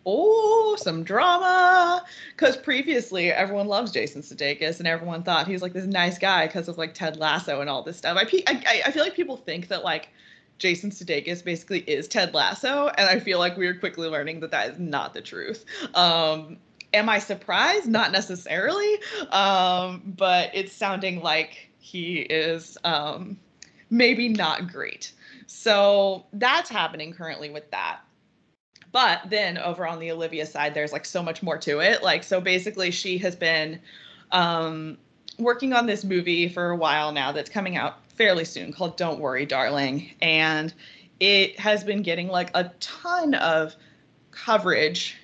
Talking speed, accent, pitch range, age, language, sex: 165 wpm, American, 160-205 Hz, 20-39, English, female